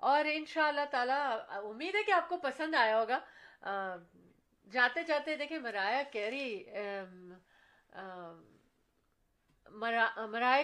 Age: 40-59